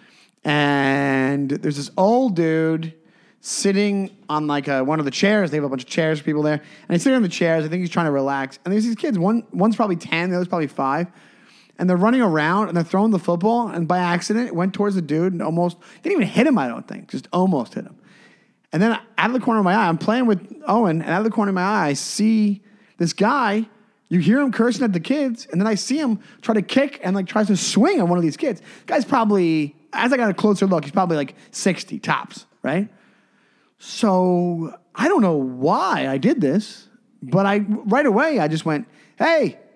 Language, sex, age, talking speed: English, male, 30-49, 230 wpm